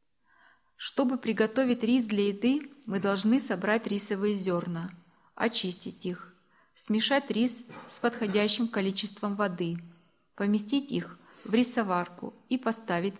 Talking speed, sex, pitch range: 110 wpm, female, 185-240 Hz